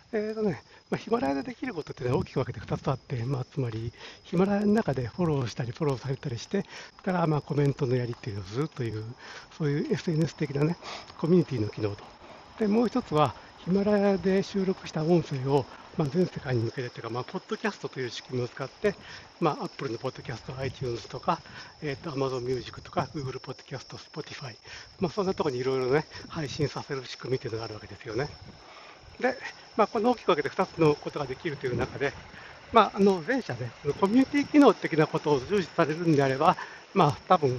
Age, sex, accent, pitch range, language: 60-79, male, native, 130-180 Hz, Japanese